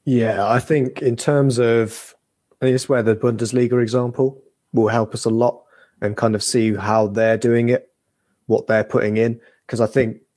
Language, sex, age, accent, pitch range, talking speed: English, male, 20-39, British, 105-125 Hz, 195 wpm